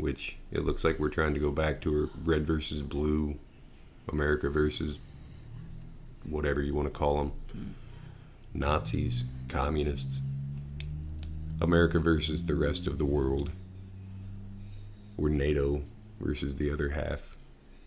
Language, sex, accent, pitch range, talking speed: English, male, American, 70-80 Hz, 125 wpm